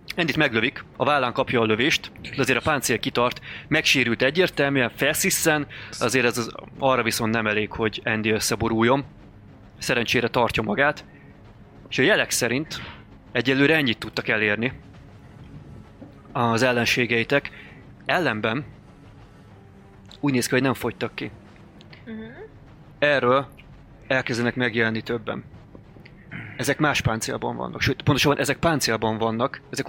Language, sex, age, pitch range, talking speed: Hungarian, male, 30-49, 115-140 Hz, 120 wpm